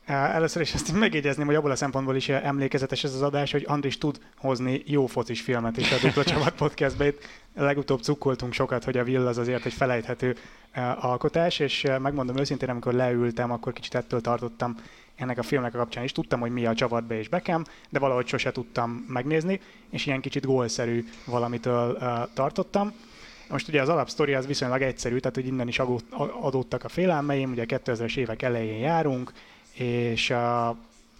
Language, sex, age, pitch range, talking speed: Hungarian, male, 20-39, 120-140 Hz, 175 wpm